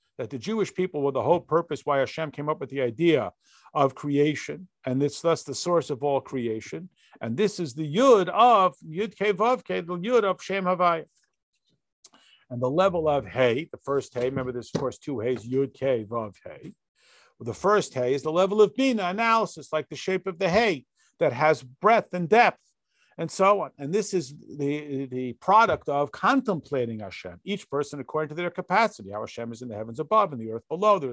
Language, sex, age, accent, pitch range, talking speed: English, male, 50-69, American, 135-190 Hz, 210 wpm